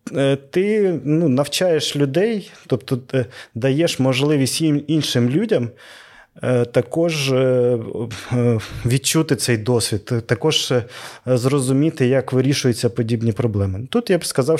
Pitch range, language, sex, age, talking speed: 125-150 Hz, Ukrainian, male, 20-39, 90 wpm